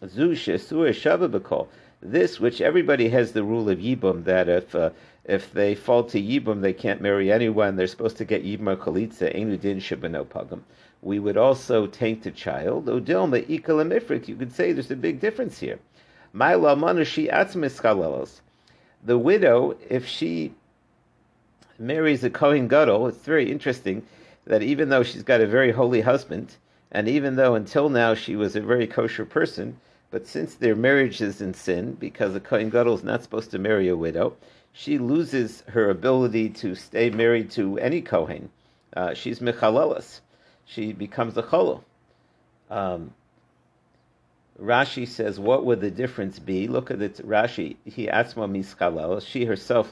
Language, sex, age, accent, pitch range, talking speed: English, male, 50-69, American, 100-125 Hz, 155 wpm